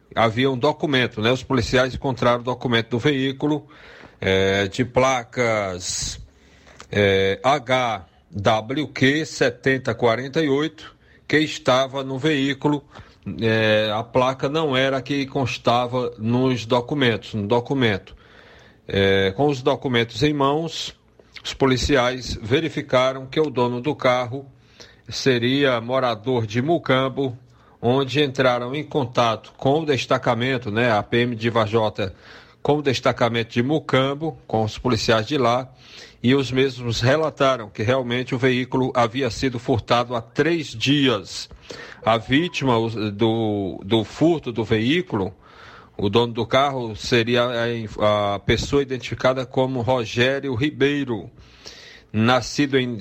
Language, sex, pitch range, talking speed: Portuguese, male, 115-135 Hz, 120 wpm